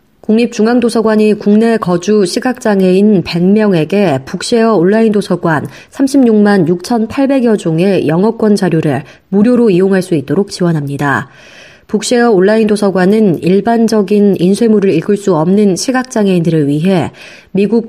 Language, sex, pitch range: Korean, female, 175-220 Hz